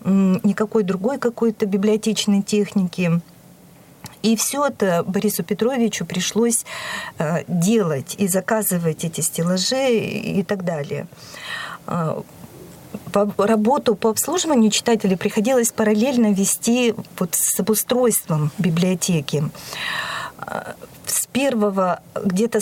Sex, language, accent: female, Russian, native